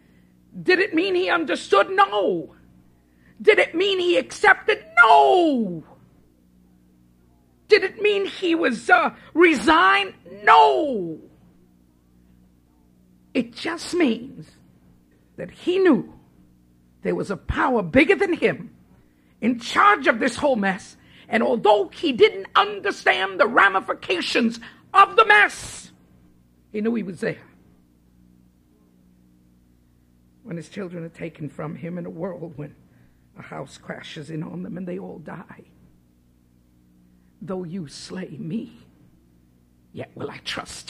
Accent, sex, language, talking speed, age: American, female, English, 120 wpm, 50-69